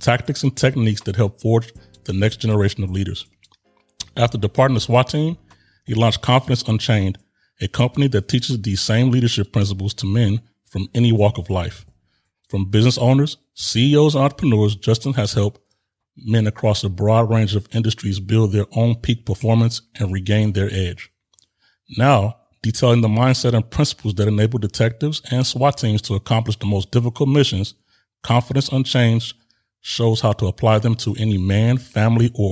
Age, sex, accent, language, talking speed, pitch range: 30-49, male, American, English, 165 wpm, 100-120 Hz